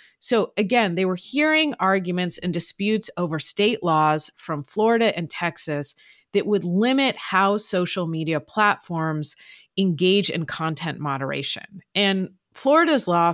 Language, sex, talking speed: English, female, 130 wpm